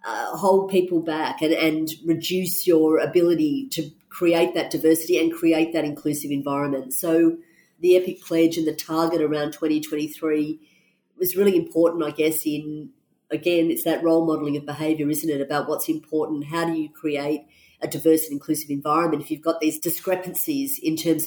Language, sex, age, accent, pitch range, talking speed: English, female, 40-59, Australian, 155-175 Hz, 170 wpm